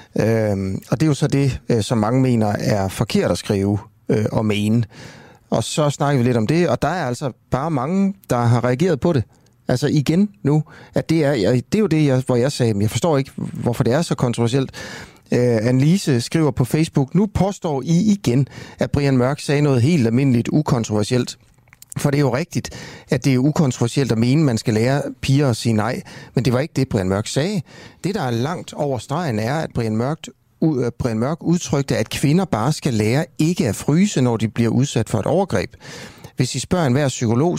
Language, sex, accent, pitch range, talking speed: Danish, male, native, 120-150 Hz, 205 wpm